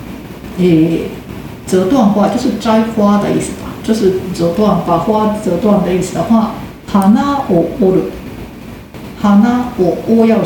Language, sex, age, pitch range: Japanese, female, 50-69, 185-225 Hz